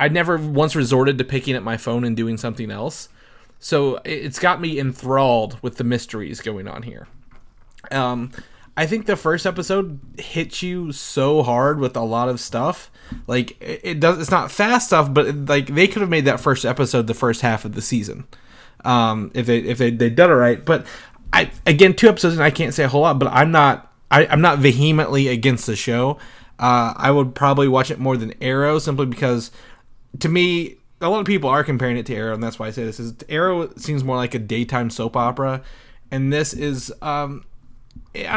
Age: 20-39